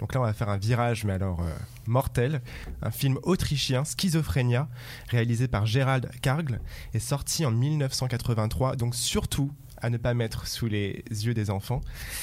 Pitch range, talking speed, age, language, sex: 110-130 Hz, 165 wpm, 20-39, French, male